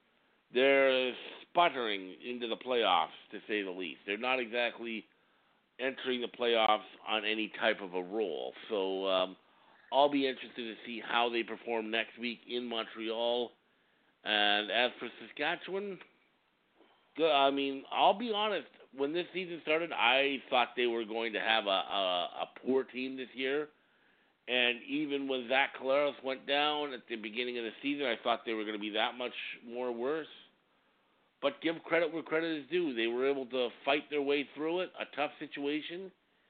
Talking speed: 170 wpm